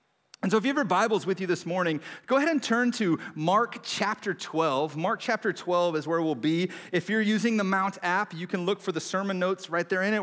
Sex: male